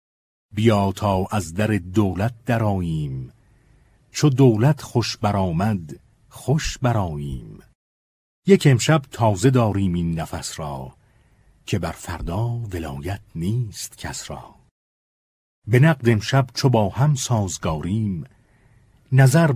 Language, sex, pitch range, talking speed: Persian, male, 85-120 Hz, 105 wpm